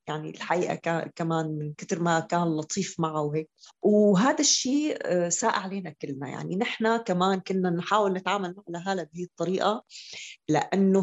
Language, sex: Arabic, female